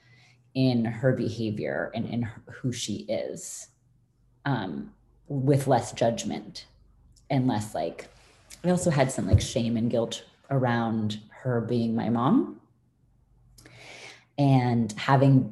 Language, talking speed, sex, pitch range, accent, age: English, 120 wpm, female, 120-160 Hz, American, 30-49